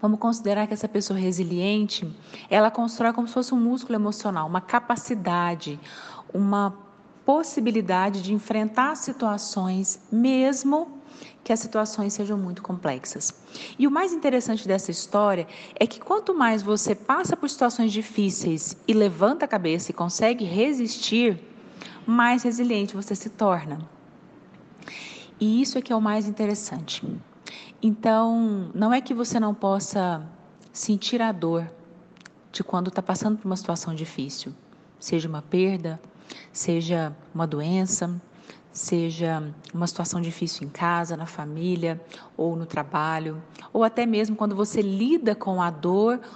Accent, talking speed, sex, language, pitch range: Brazilian, 140 wpm, female, Portuguese, 175-225 Hz